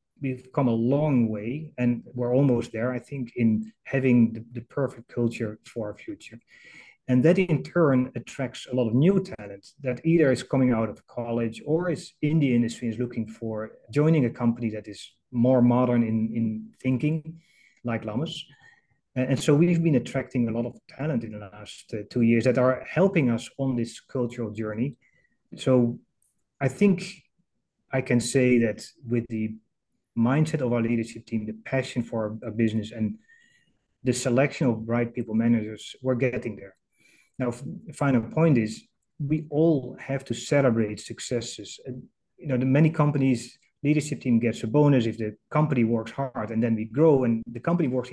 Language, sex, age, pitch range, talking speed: English, male, 30-49, 115-135 Hz, 180 wpm